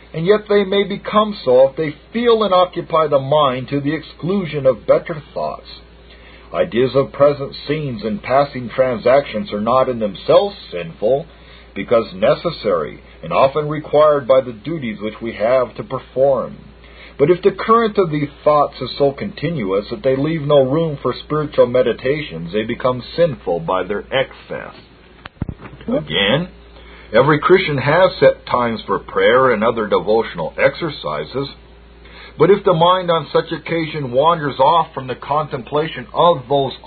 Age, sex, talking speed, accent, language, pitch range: 50-69, male, 155 wpm, American, English, 125-170 Hz